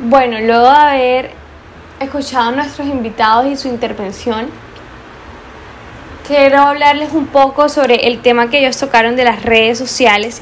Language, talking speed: Spanish, 145 wpm